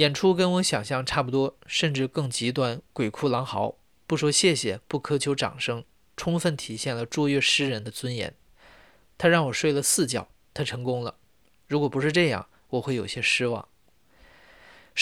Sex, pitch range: male, 120-155 Hz